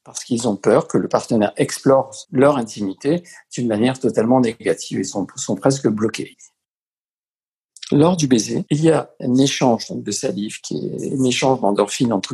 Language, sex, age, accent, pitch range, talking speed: French, male, 50-69, French, 125-185 Hz, 170 wpm